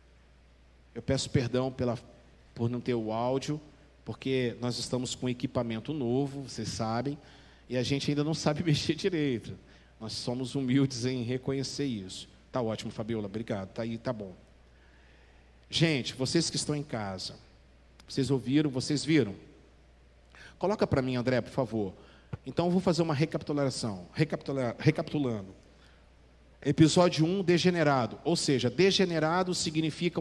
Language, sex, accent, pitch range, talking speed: Portuguese, male, Brazilian, 95-155 Hz, 140 wpm